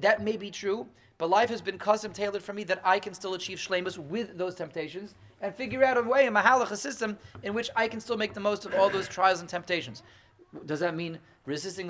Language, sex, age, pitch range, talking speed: English, male, 30-49, 140-195 Hz, 240 wpm